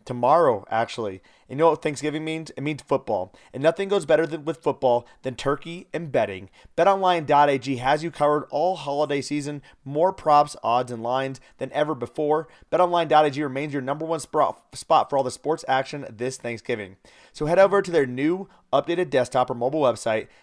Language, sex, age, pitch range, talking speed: English, male, 30-49, 130-165 Hz, 180 wpm